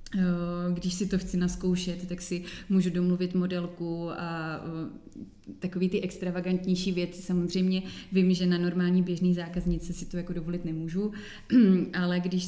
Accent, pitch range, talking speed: native, 175-190 Hz, 140 wpm